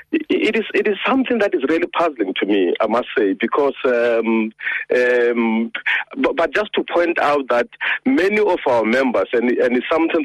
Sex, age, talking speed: male, 50-69, 185 wpm